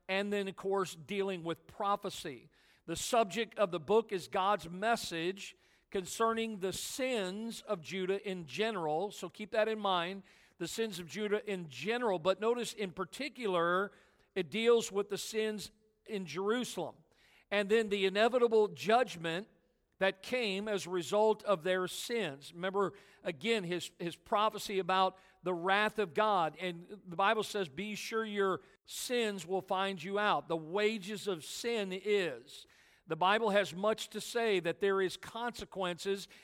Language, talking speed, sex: English, 155 wpm, male